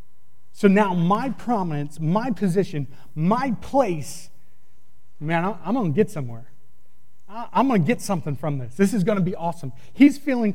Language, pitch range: English, 150-210 Hz